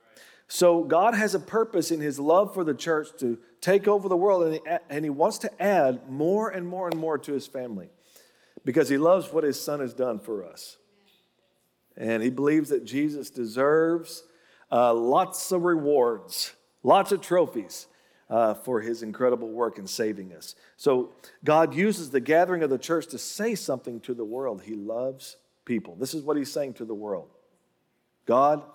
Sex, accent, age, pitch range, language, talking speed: male, American, 50-69, 135-180 Hz, English, 180 wpm